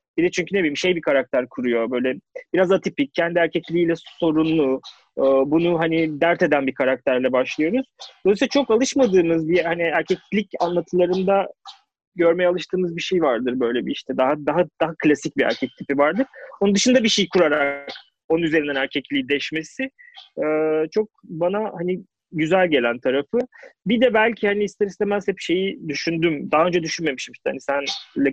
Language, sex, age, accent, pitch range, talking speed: Turkish, male, 30-49, native, 145-205 Hz, 155 wpm